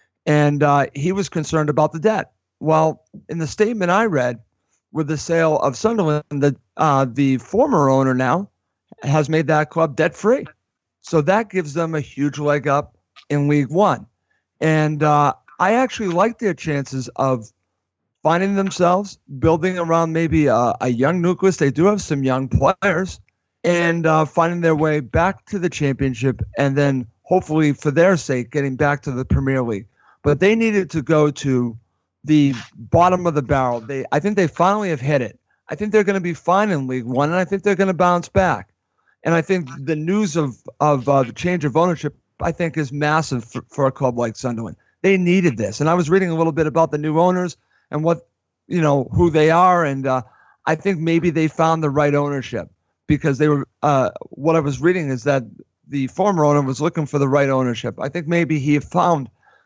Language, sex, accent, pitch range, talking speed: English, male, American, 135-175 Hz, 200 wpm